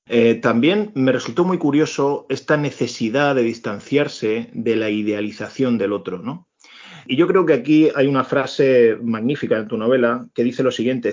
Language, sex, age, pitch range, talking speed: Spanish, male, 30-49, 120-160 Hz, 175 wpm